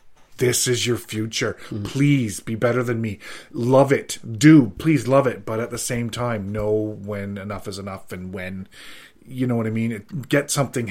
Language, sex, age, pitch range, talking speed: English, male, 30-49, 105-140 Hz, 185 wpm